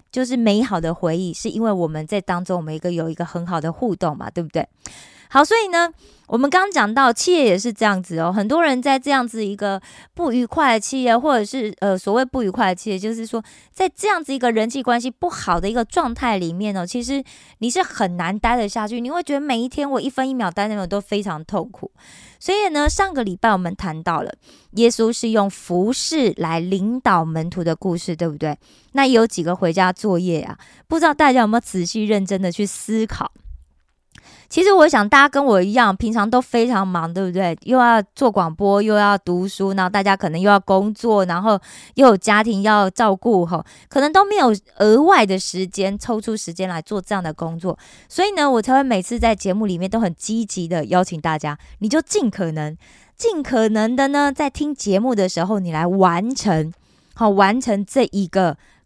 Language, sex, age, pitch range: Korean, female, 20-39, 185-245 Hz